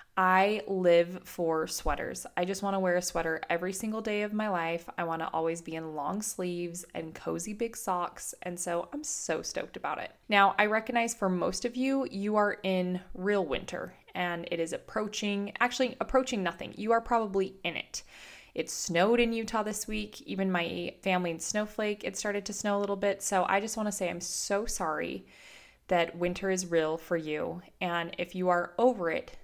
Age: 20-39